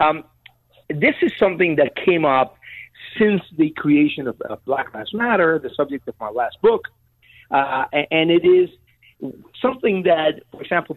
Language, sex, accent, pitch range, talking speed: English, male, American, 125-170 Hz, 165 wpm